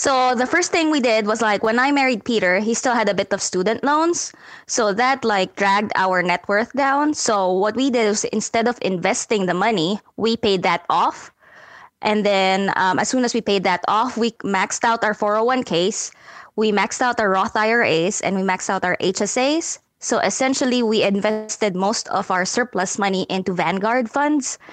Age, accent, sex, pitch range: 20-39, Filipino, female, 185-230 Hz